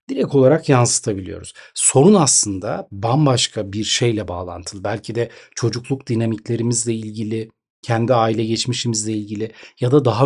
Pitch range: 110-150 Hz